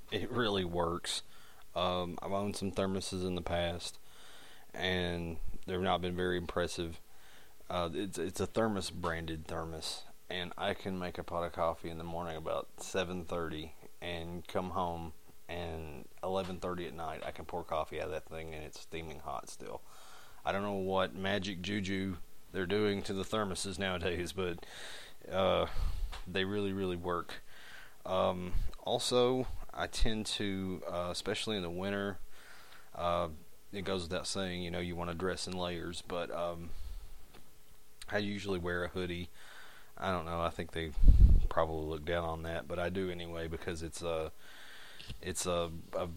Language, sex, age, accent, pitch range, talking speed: English, male, 30-49, American, 85-95 Hz, 160 wpm